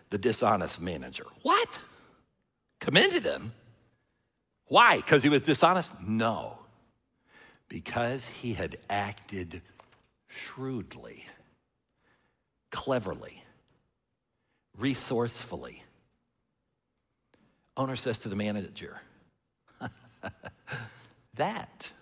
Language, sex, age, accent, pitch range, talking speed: English, male, 60-79, American, 95-125 Hz, 70 wpm